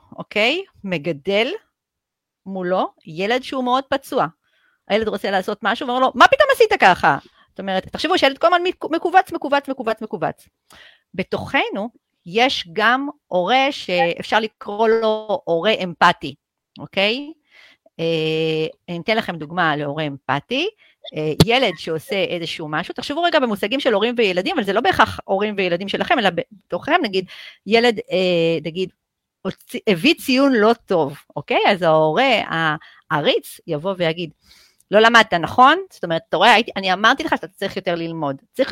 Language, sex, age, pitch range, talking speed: Hebrew, female, 40-59, 175-260 Hz, 135 wpm